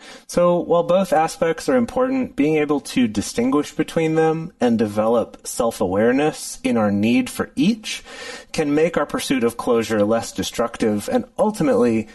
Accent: American